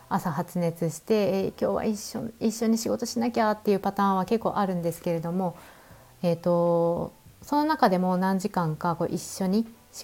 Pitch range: 165-235 Hz